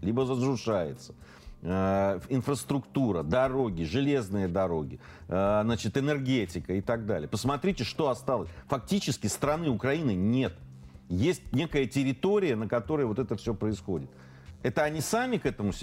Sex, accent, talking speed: male, native, 120 wpm